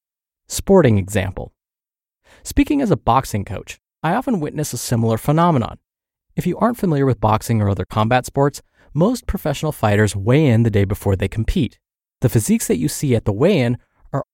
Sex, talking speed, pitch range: male, 175 wpm, 115-155 Hz